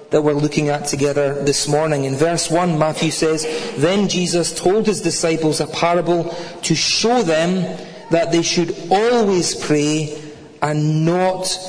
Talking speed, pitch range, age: 150 wpm, 155-190 Hz, 40-59